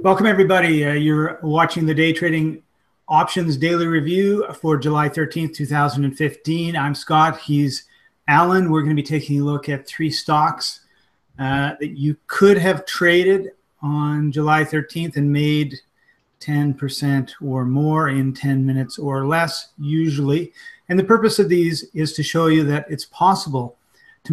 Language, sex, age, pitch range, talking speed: English, male, 40-59, 140-165 Hz, 155 wpm